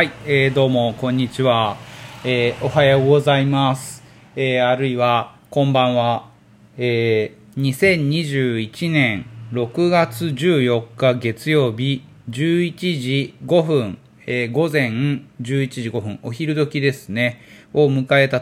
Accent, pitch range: native, 125-160 Hz